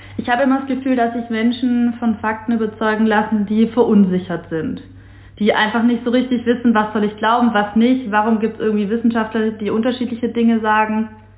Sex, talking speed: female, 190 wpm